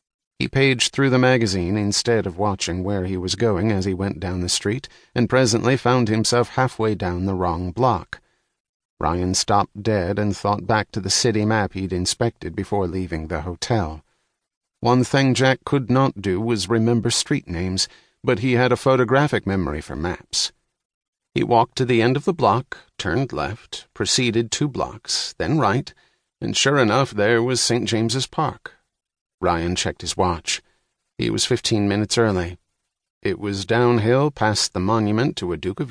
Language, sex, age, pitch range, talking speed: English, male, 40-59, 95-125 Hz, 170 wpm